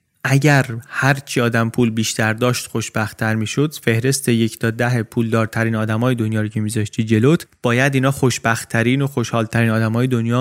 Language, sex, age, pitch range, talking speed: Persian, male, 30-49, 120-150 Hz, 165 wpm